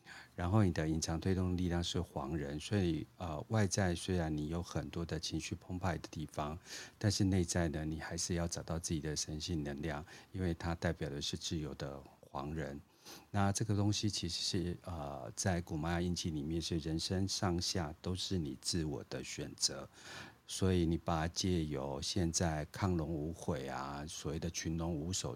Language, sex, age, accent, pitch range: Chinese, male, 50-69, native, 80-90 Hz